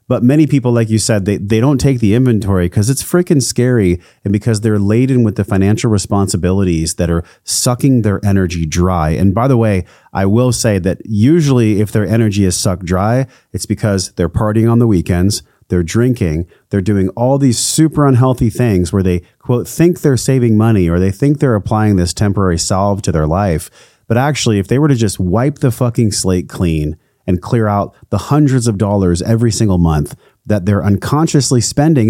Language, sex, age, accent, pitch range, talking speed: English, male, 30-49, American, 100-130 Hz, 195 wpm